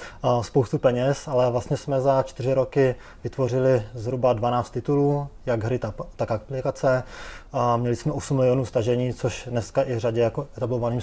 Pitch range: 120-135 Hz